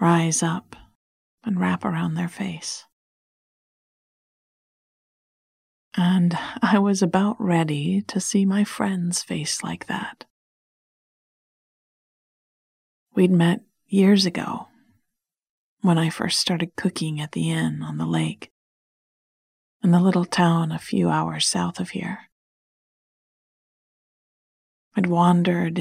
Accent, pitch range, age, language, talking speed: American, 165-195 Hz, 40-59, English, 105 wpm